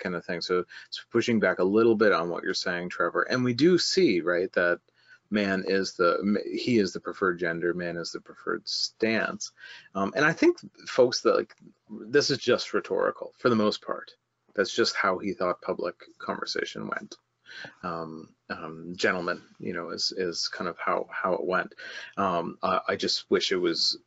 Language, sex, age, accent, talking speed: English, male, 30-49, American, 190 wpm